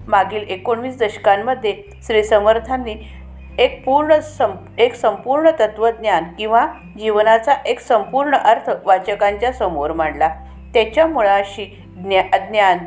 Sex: female